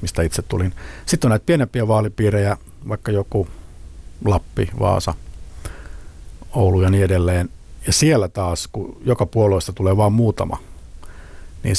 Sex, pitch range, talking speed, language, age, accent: male, 85-105 Hz, 130 wpm, Finnish, 60-79, native